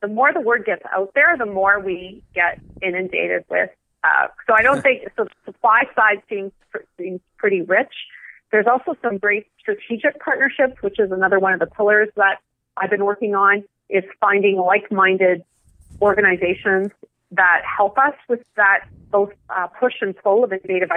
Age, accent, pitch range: 30-49, American, 185-220 Hz